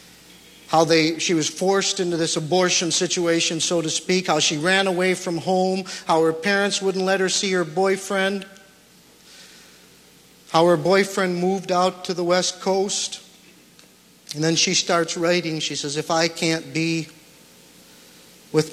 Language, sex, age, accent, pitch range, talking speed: English, male, 50-69, American, 115-180 Hz, 150 wpm